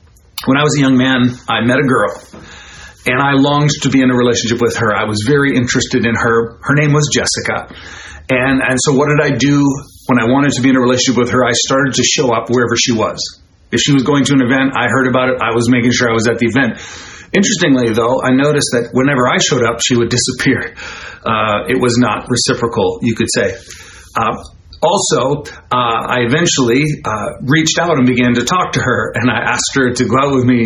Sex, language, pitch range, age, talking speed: male, English, 115-135 Hz, 40-59, 230 wpm